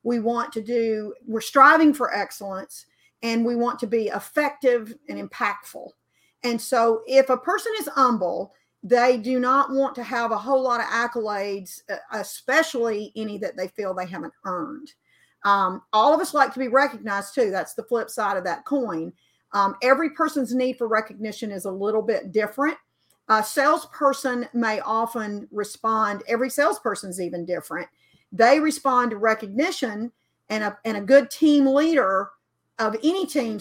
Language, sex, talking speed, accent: English, female, 165 wpm, American